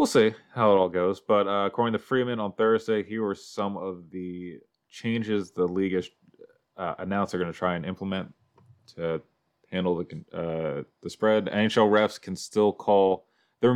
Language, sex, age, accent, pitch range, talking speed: English, male, 20-39, American, 85-105 Hz, 185 wpm